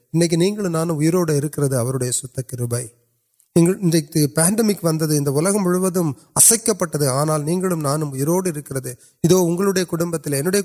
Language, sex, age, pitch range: Urdu, male, 30-49, 140-180 Hz